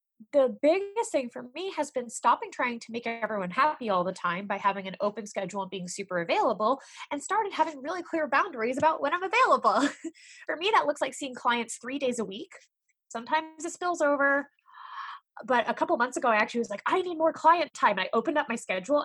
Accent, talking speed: American, 215 wpm